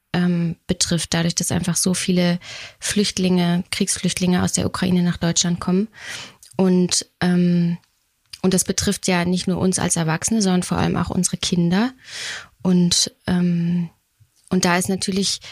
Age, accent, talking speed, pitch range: 20-39, German, 135 wpm, 175-190 Hz